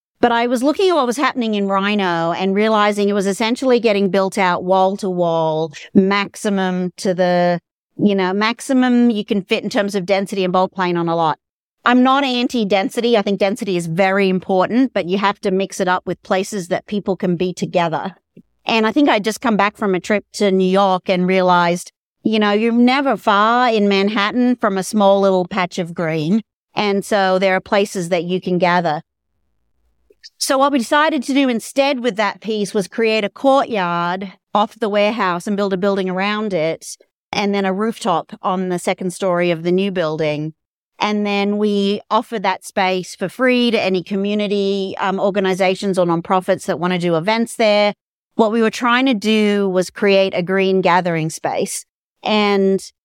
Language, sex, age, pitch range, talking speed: English, female, 50-69, 185-220 Hz, 190 wpm